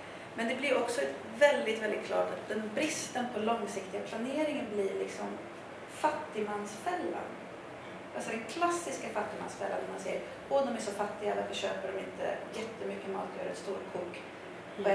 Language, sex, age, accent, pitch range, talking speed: Swedish, female, 30-49, native, 210-280 Hz, 155 wpm